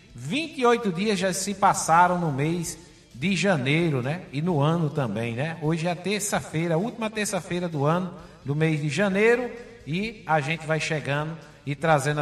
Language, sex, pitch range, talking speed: Portuguese, male, 140-185 Hz, 170 wpm